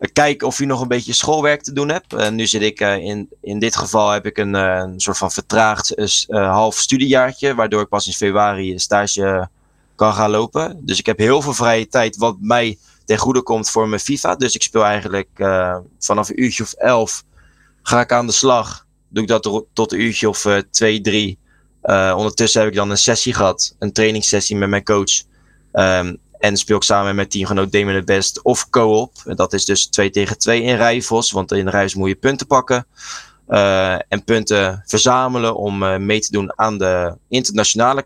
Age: 20-39